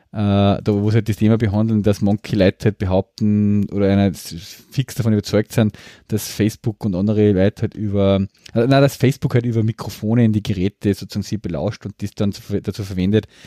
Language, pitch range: German, 100-115 Hz